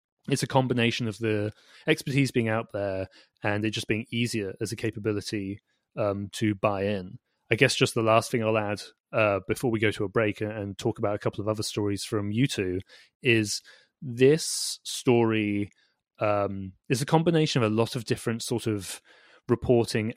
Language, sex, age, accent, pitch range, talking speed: English, male, 30-49, British, 105-125 Hz, 185 wpm